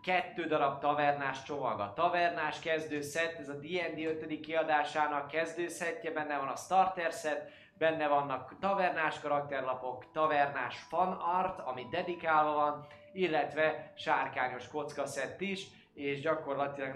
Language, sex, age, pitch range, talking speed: Hungarian, male, 20-39, 140-165 Hz, 120 wpm